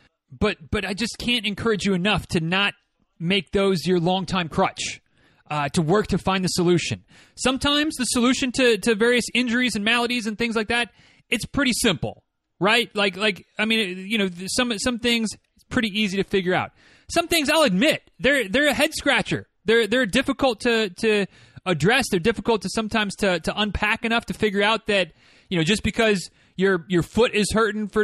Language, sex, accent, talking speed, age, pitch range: English, male, American, 195 wpm, 30-49, 180-240 Hz